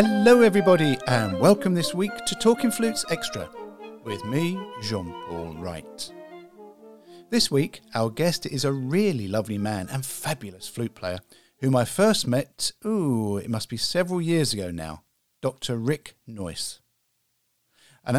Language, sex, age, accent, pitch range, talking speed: English, male, 50-69, British, 105-160 Hz, 140 wpm